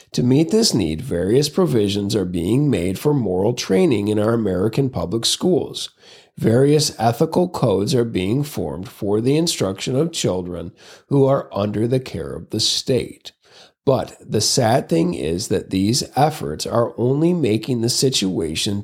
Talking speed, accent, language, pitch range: 155 wpm, American, English, 105-155 Hz